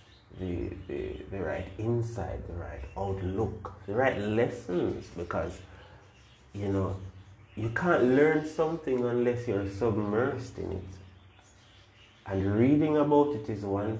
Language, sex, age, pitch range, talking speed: English, male, 30-49, 95-110 Hz, 125 wpm